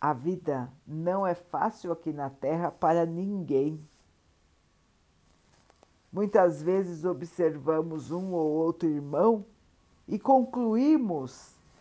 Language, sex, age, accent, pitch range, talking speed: Portuguese, female, 50-69, Brazilian, 150-205 Hz, 95 wpm